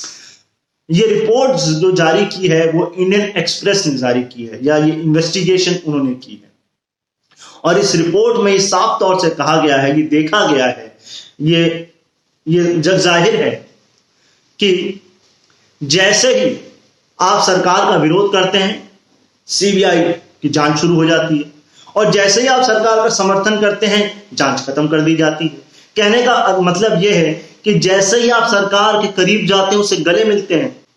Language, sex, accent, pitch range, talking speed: Hindi, male, native, 155-205 Hz, 165 wpm